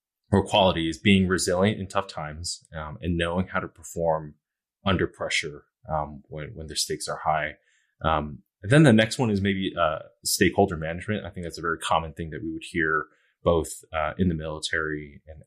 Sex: male